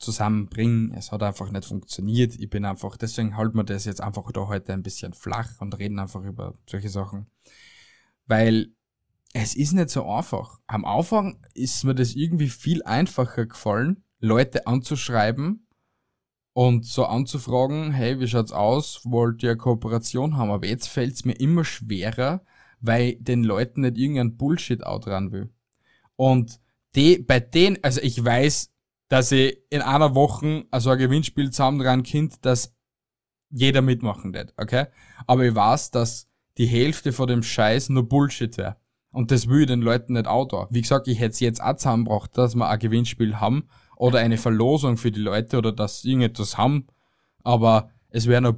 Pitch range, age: 110-130 Hz, 20-39